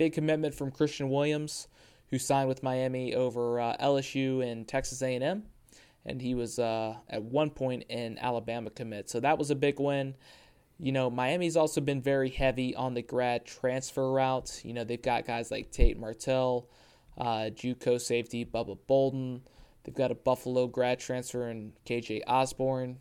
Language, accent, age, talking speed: English, American, 20-39, 170 wpm